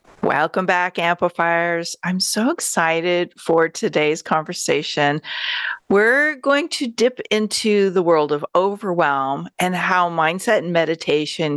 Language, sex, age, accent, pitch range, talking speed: English, female, 40-59, American, 165-230 Hz, 120 wpm